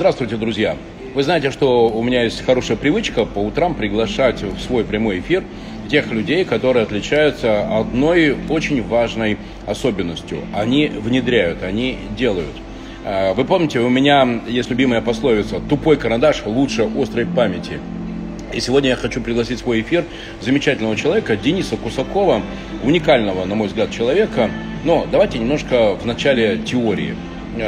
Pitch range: 110-150 Hz